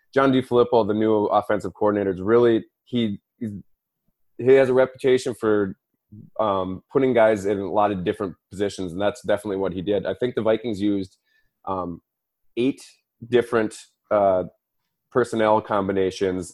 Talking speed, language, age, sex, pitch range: 140 wpm, English, 20-39, male, 95-115 Hz